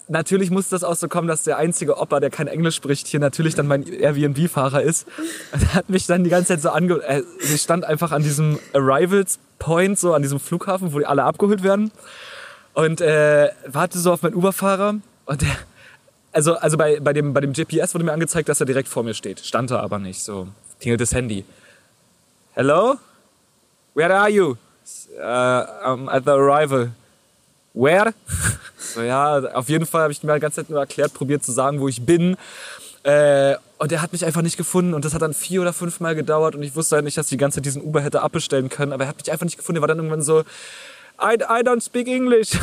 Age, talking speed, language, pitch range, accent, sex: 20-39, 220 wpm, German, 145-190 Hz, German, male